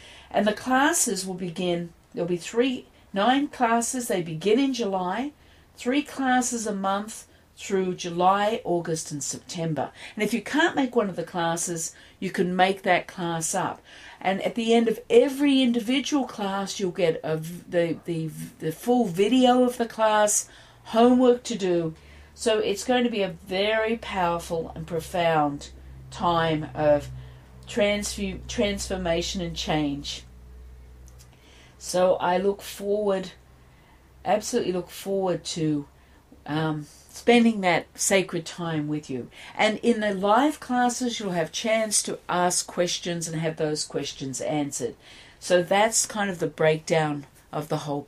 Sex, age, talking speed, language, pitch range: female, 50-69, 145 wpm, English, 160-230 Hz